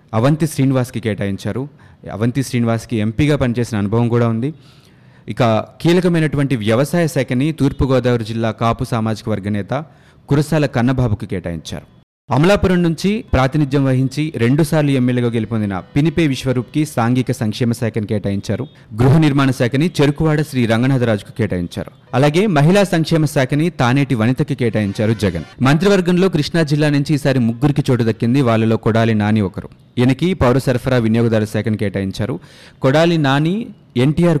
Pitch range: 115-150 Hz